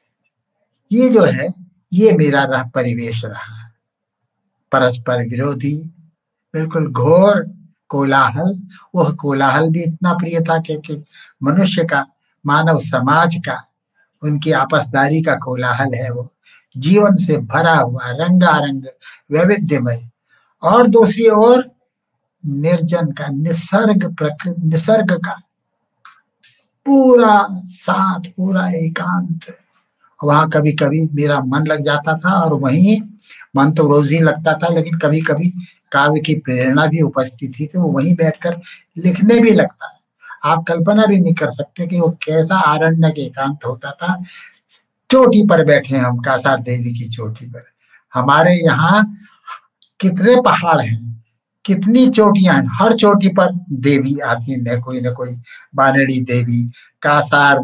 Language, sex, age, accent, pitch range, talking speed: Hindi, male, 60-79, native, 135-180 Hz, 130 wpm